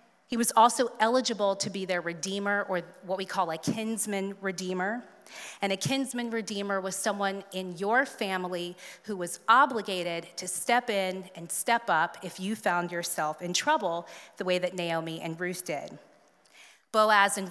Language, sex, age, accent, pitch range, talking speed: English, female, 30-49, American, 180-230 Hz, 165 wpm